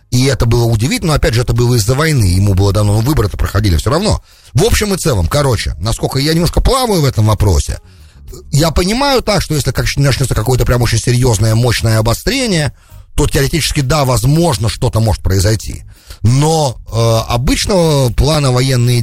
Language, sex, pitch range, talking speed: English, male, 95-140 Hz, 170 wpm